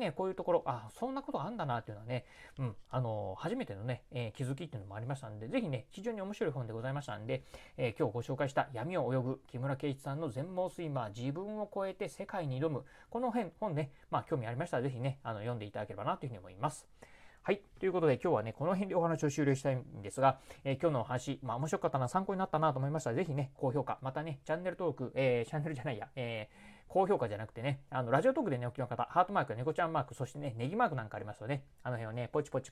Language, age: Japanese, 30-49